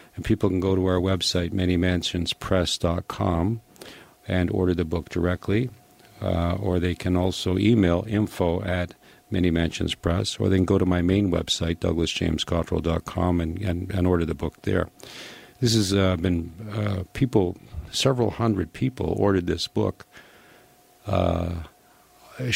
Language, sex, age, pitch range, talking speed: English, male, 50-69, 90-100 Hz, 135 wpm